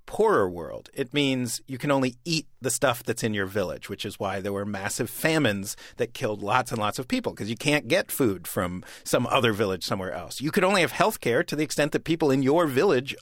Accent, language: American, English